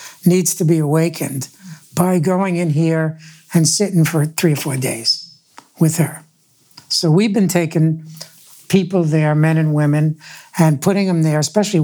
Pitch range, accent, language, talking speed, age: 155-180 Hz, American, English, 155 wpm, 60-79